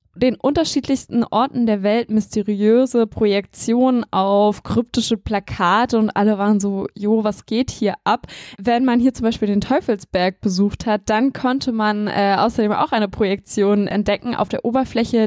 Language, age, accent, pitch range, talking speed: German, 10-29, German, 210-245 Hz, 155 wpm